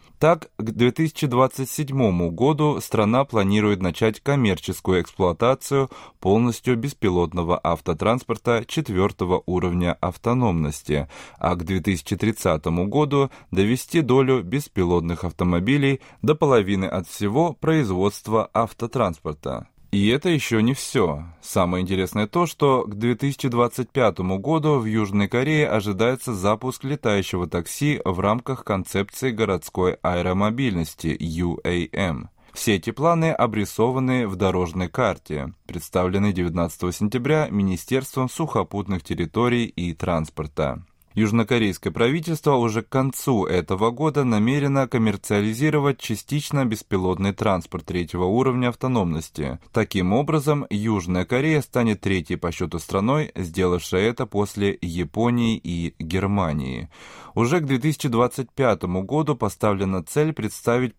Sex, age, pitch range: male, 20-39, 90-130 Hz